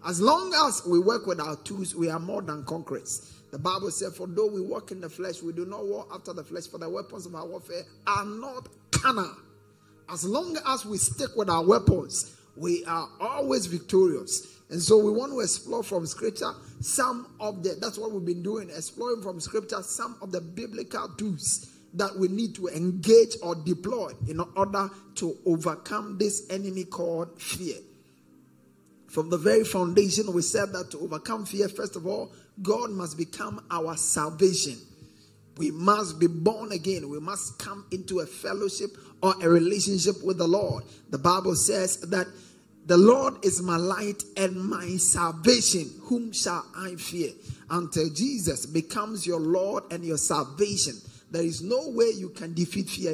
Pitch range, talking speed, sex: 165-210 Hz, 175 wpm, male